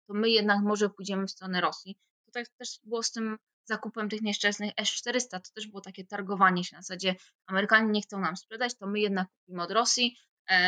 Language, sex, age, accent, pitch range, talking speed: English, female, 20-39, Polish, 190-235 Hz, 210 wpm